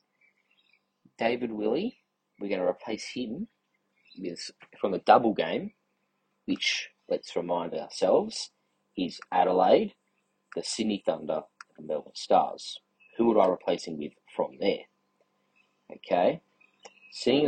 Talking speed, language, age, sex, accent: 115 wpm, English, 30-49, male, Australian